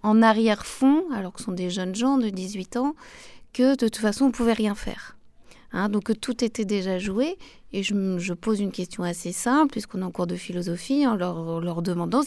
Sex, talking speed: female, 220 wpm